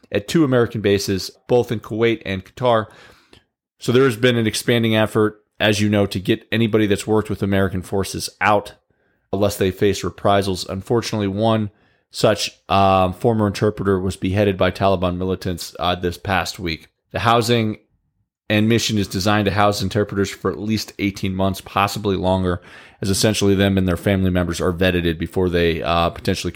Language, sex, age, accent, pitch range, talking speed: English, male, 30-49, American, 95-130 Hz, 170 wpm